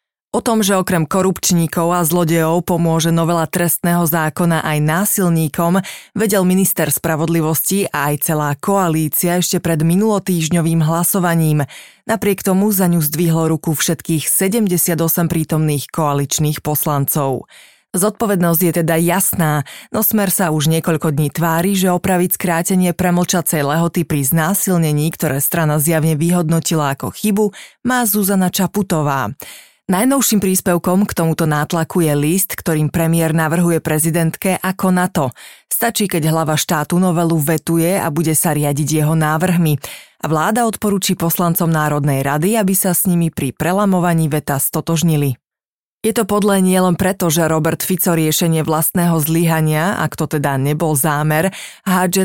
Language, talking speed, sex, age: Slovak, 135 wpm, female, 30-49